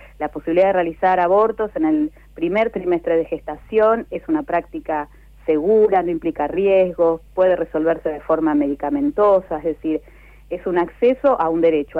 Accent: Argentinian